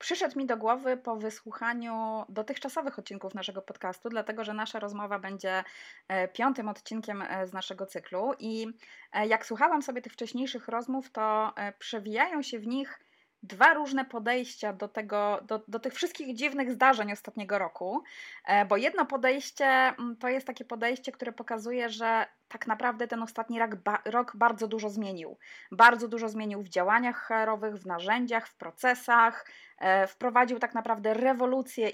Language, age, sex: Polish, 20-39, female